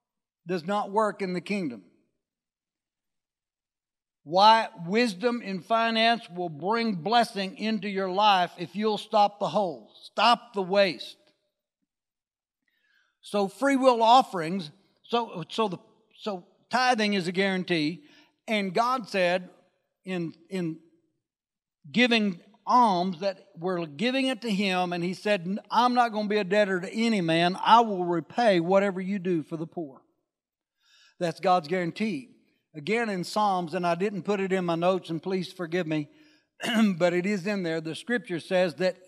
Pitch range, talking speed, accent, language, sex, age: 175-220 Hz, 150 wpm, American, English, male, 60-79